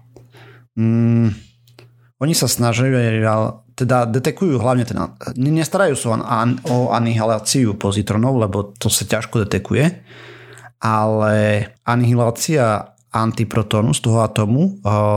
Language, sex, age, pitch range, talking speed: Slovak, male, 30-49, 105-125 Hz, 90 wpm